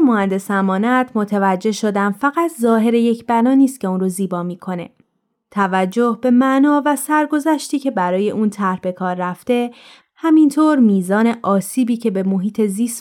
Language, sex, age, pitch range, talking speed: Persian, female, 20-39, 195-260 Hz, 150 wpm